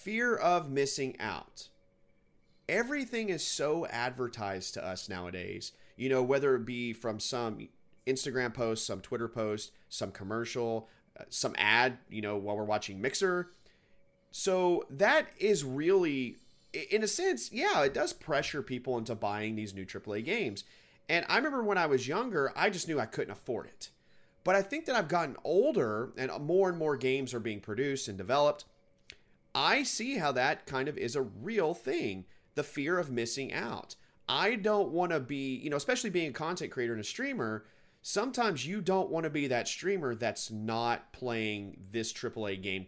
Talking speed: 180 wpm